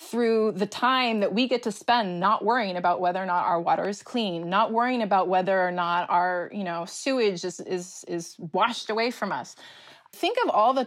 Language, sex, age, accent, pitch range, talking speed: English, female, 20-39, American, 185-255 Hz, 200 wpm